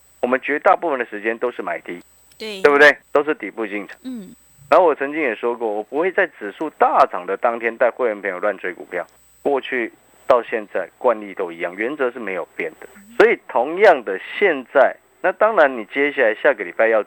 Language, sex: Chinese, male